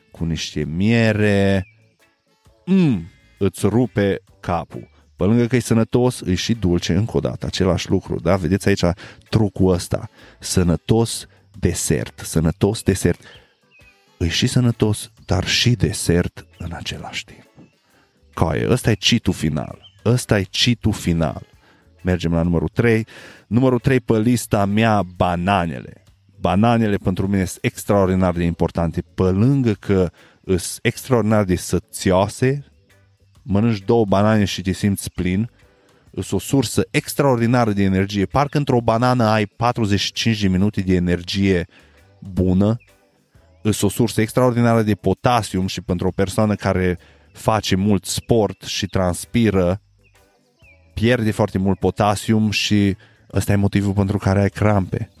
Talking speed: 130 wpm